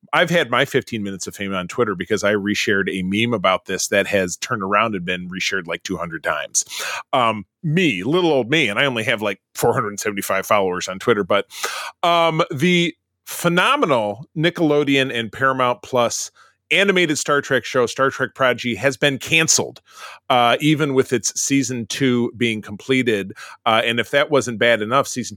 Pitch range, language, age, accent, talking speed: 115-155 Hz, English, 30-49, American, 175 wpm